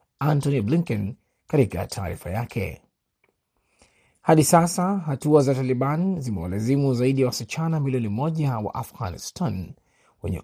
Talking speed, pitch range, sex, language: 105 wpm, 110-145 Hz, male, Swahili